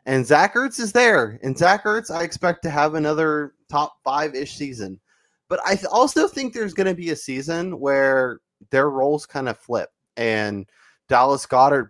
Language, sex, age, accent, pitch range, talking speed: English, male, 20-39, American, 120-155 Hz, 180 wpm